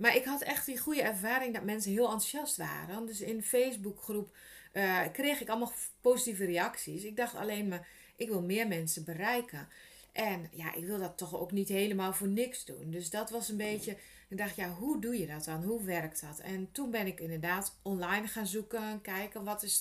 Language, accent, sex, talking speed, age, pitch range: Dutch, Dutch, female, 210 wpm, 30-49, 175-235 Hz